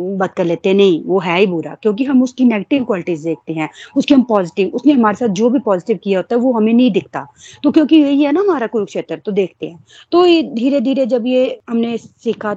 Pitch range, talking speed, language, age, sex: 190-245 Hz, 230 wpm, Hindi, 30-49, female